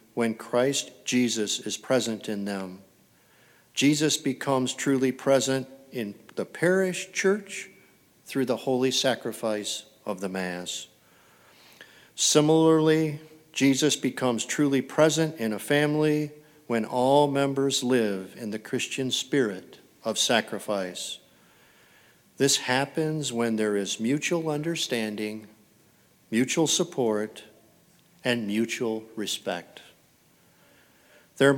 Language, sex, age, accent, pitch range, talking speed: English, male, 50-69, American, 110-150 Hz, 100 wpm